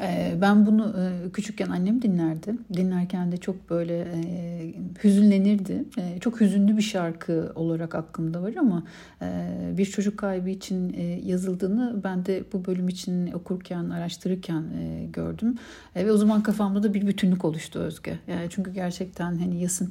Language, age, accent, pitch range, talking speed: Turkish, 60-79, native, 175-200 Hz, 155 wpm